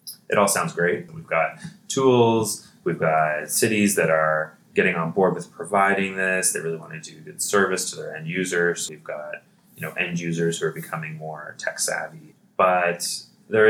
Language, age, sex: English, 20-39, male